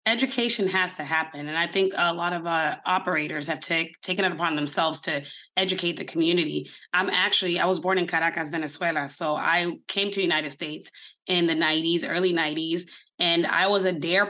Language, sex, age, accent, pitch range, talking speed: English, female, 20-39, American, 175-215 Hz, 195 wpm